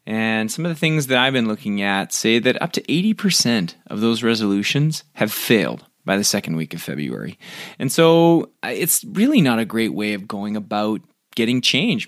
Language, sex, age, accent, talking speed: English, male, 30-49, American, 195 wpm